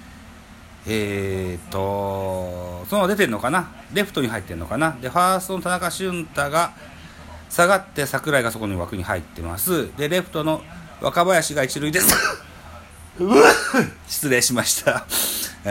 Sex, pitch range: male, 95-150 Hz